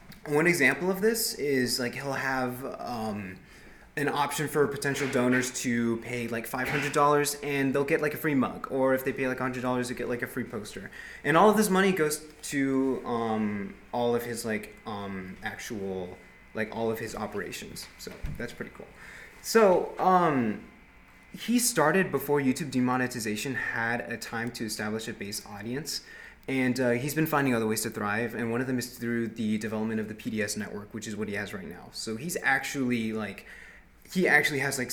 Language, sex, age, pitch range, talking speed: English, male, 20-39, 115-145 Hz, 190 wpm